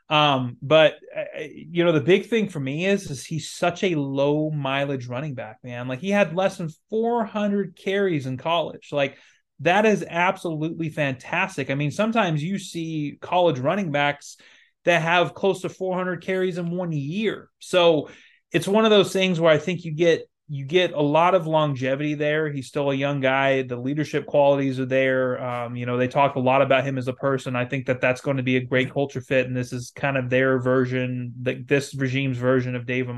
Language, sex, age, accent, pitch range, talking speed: English, male, 20-39, American, 130-170 Hz, 210 wpm